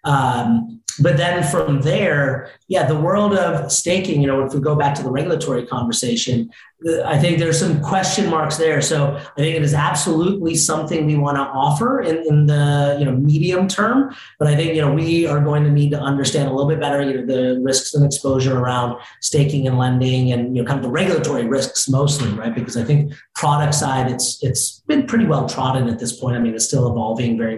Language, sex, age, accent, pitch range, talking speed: English, male, 30-49, American, 125-150 Hz, 220 wpm